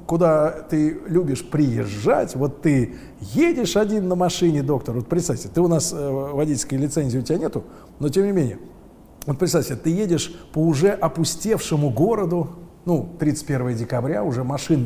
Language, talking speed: Russian, 155 wpm